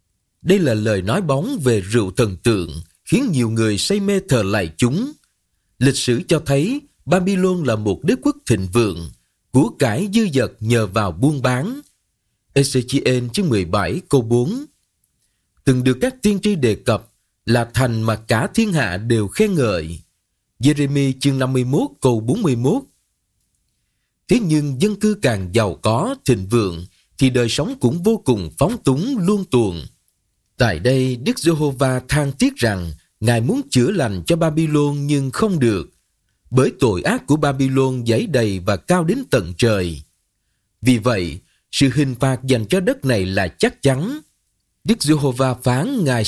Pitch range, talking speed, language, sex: 110-145 Hz, 165 wpm, Vietnamese, male